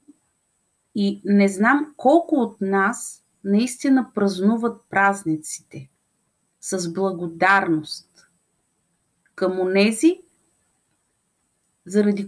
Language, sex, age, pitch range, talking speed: Bulgarian, female, 40-59, 175-215 Hz, 70 wpm